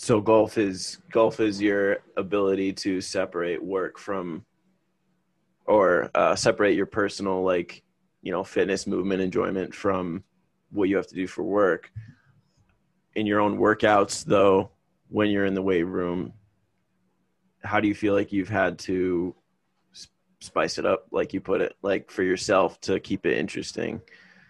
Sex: male